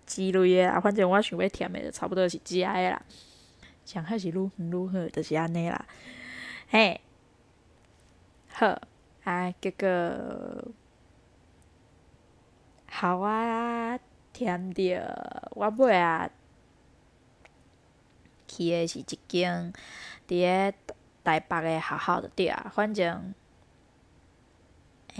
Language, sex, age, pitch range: Chinese, female, 20-39, 175-210 Hz